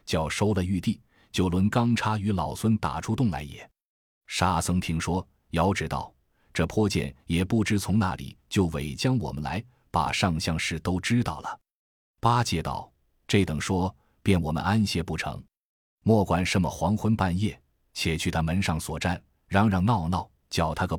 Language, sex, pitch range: Chinese, male, 80-105 Hz